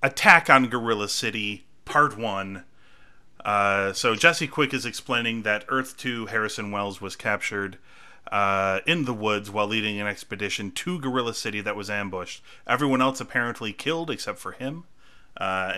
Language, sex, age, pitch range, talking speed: English, male, 30-49, 105-135 Hz, 155 wpm